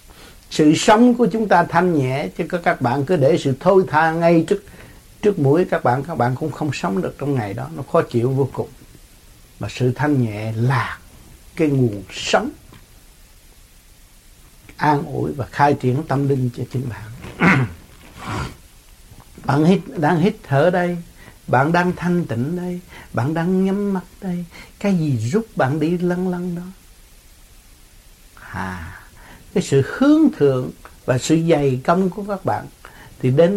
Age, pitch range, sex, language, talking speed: 60-79, 125-180 Hz, male, Vietnamese, 165 wpm